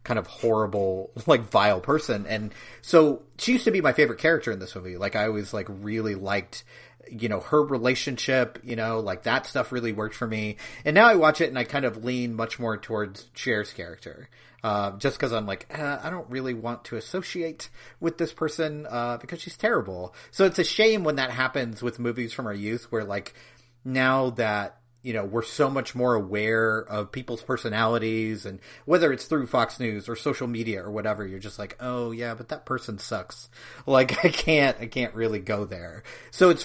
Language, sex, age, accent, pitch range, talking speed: English, male, 40-59, American, 110-140 Hz, 210 wpm